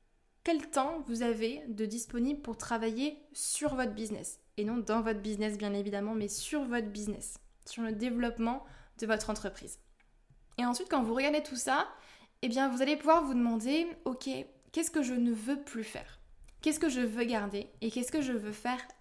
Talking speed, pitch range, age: 195 wpm, 215-255 Hz, 20-39